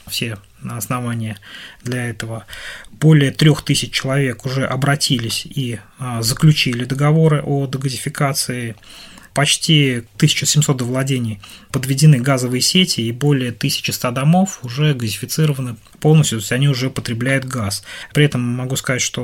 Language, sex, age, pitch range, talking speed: Russian, male, 20-39, 115-140 Hz, 120 wpm